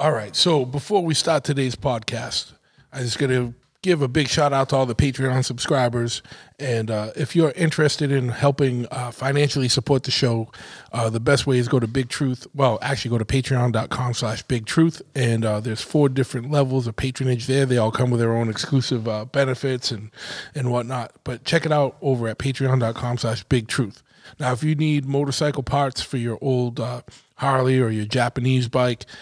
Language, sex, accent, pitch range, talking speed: English, male, American, 125-145 Hz, 195 wpm